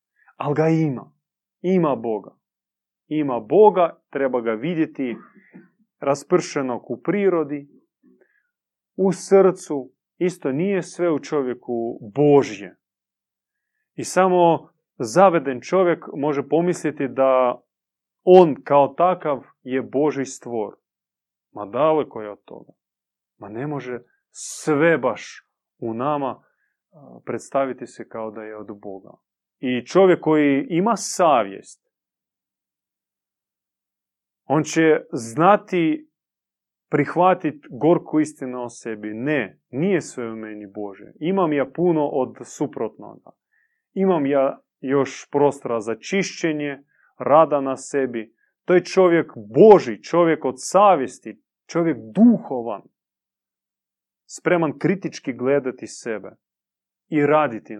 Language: Croatian